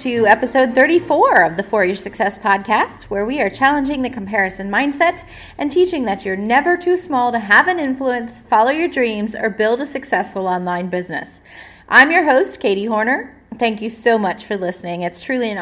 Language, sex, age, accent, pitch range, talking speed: English, female, 30-49, American, 195-270 Hz, 190 wpm